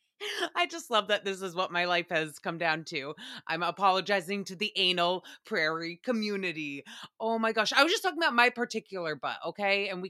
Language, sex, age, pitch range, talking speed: English, female, 30-49, 200-270 Hz, 200 wpm